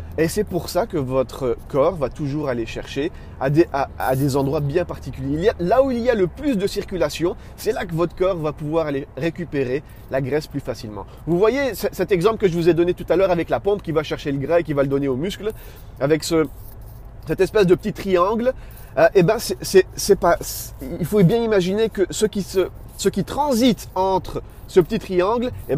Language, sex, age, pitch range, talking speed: French, male, 30-49, 120-185 Hz, 230 wpm